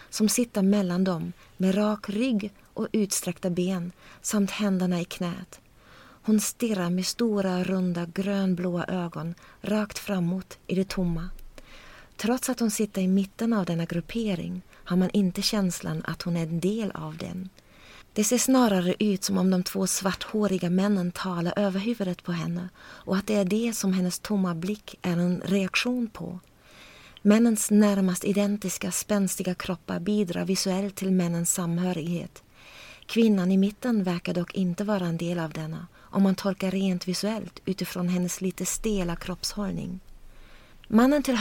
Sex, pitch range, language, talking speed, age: female, 180-205 Hz, Swedish, 155 wpm, 30-49